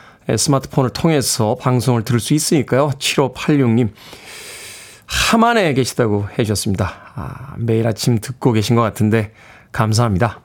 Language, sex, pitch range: Korean, male, 110-160 Hz